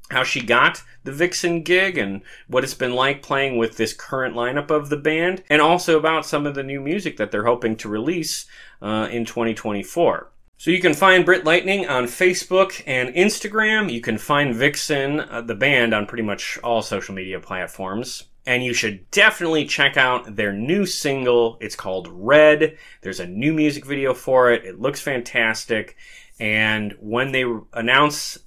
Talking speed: 180 wpm